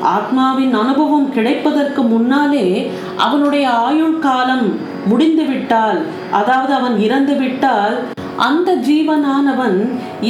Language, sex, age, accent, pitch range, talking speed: Tamil, female, 50-69, native, 225-290 Hz, 75 wpm